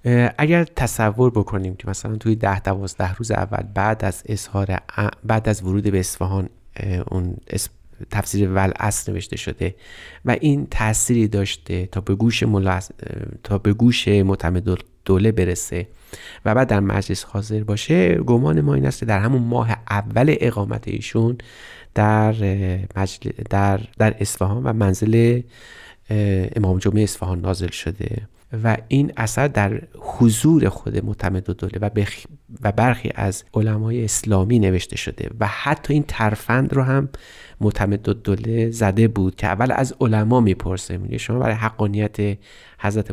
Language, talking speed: Persian, 140 wpm